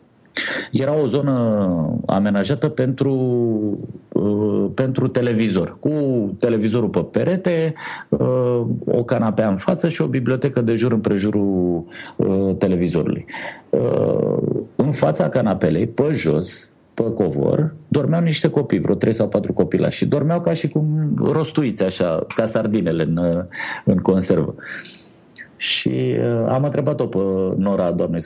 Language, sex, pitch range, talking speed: Romanian, male, 100-150 Hz, 125 wpm